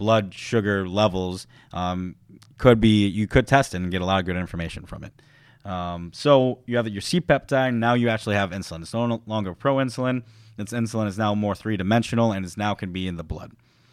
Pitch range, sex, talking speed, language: 95-120 Hz, male, 205 wpm, English